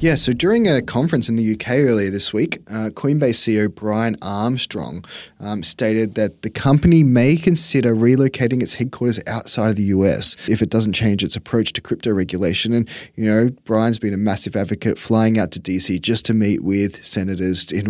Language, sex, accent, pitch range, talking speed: English, male, Australian, 100-120 Hz, 190 wpm